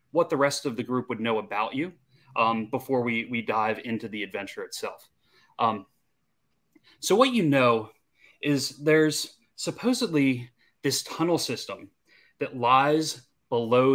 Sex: male